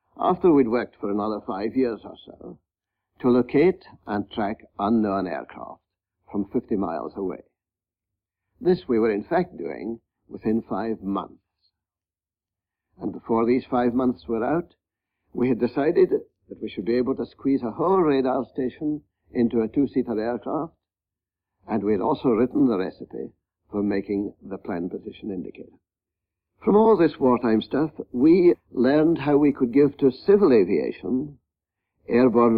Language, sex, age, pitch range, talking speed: English, male, 60-79, 100-130 Hz, 150 wpm